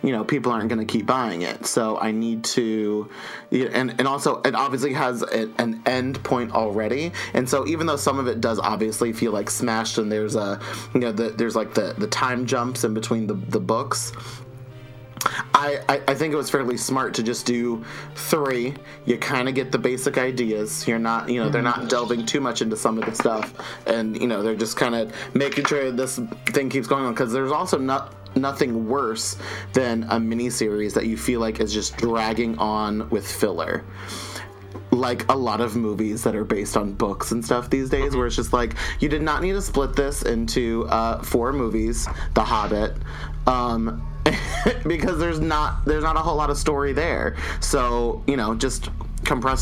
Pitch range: 110-130 Hz